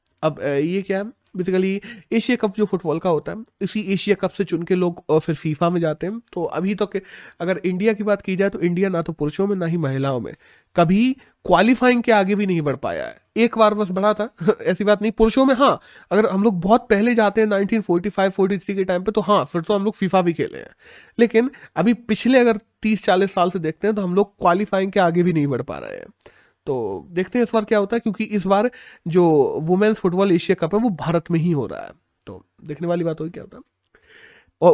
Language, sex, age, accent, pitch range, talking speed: Hindi, male, 30-49, native, 170-215 Hz, 245 wpm